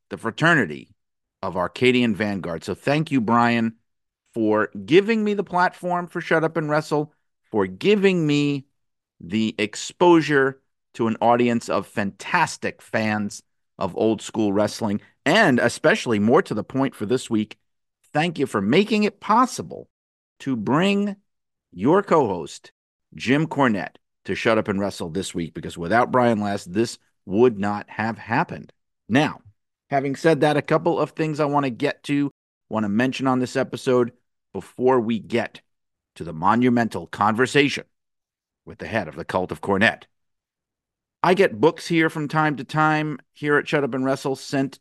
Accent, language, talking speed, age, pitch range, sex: American, English, 160 wpm, 50-69, 110-150 Hz, male